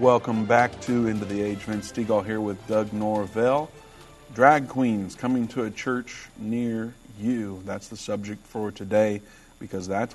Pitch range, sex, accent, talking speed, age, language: 100-115 Hz, male, American, 160 wpm, 50-69, English